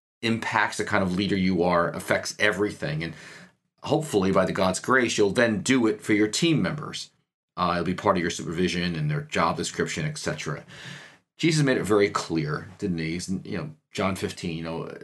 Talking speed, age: 195 wpm, 40-59